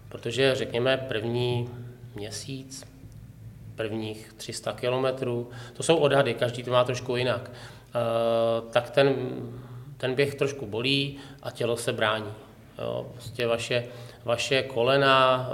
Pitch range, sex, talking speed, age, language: 115-130 Hz, male, 110 wpm, 30-49, Czech